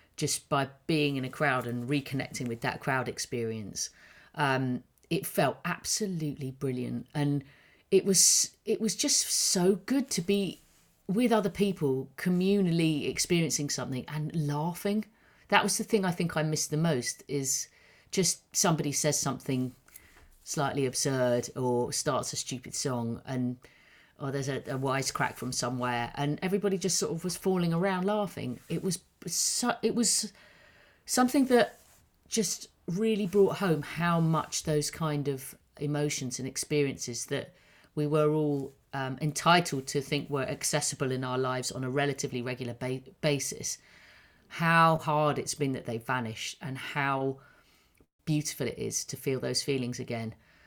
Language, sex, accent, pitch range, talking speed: English, female, British, 130-170 Hz, 150 wpm